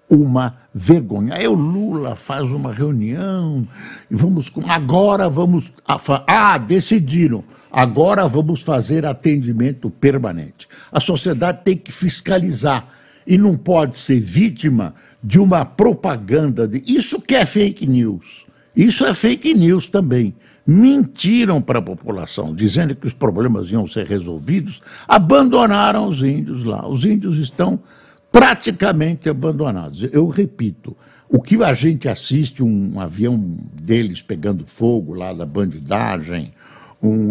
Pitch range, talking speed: 115-180 Hz, 130 wpm